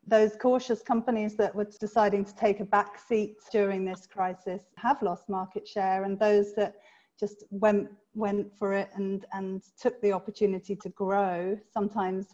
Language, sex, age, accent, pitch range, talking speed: English, female, 30-49, British, 185-210 Hz, 165 wpm